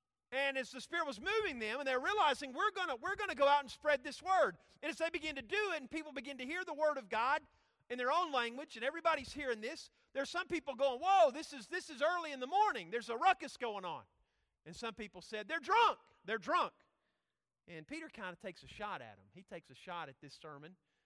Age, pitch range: 40-59, 180-290 Hz